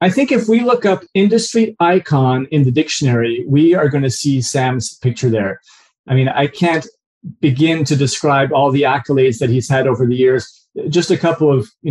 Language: English